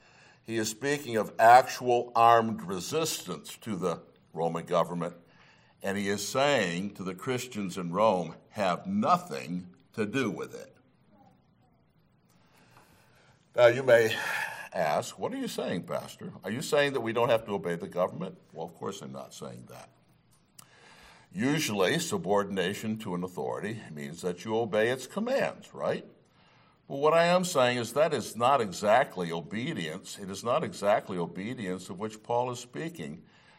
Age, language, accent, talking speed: 60-79, English, American, 155 wpm